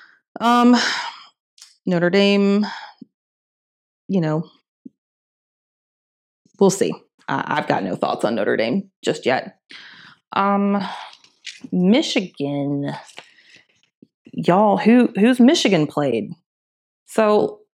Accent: American